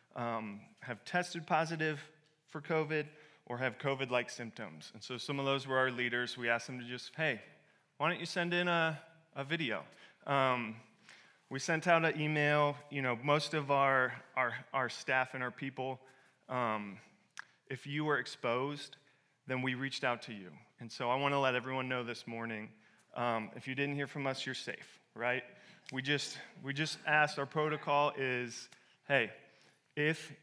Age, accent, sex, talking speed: 30-49, American, male, 180 wpm